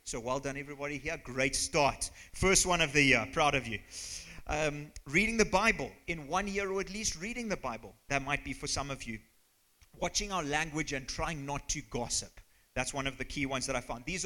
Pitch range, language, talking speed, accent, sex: 125-175 Hz, English, 225 wpm, British, male